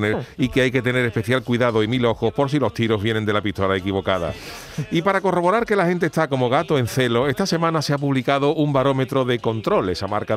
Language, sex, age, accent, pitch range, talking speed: Spanish, male, 40-59, Spanish, 120-150 Hz, 235 wpm